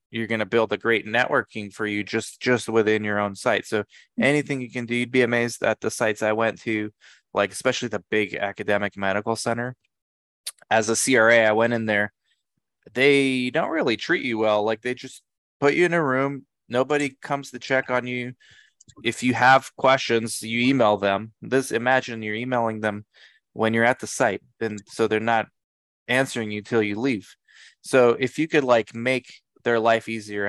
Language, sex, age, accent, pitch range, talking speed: English, male, 20-39, American, 105-125 Hz, 195 wpm